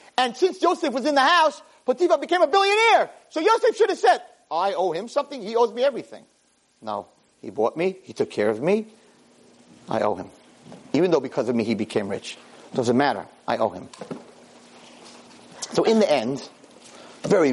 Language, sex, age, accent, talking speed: English, male, 40-59, American, 185 wpm